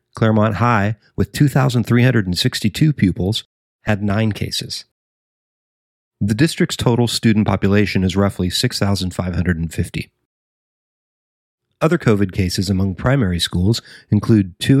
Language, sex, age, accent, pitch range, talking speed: English, male, 40-59, American, 95-120 Hz, 95 wpm